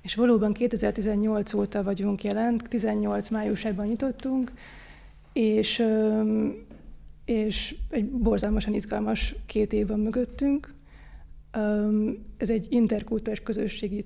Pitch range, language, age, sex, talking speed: 200-220 Hz, Hungarian, 20-39, female, 95 wpm